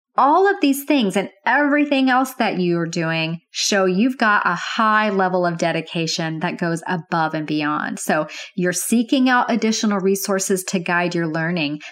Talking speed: 165 wpm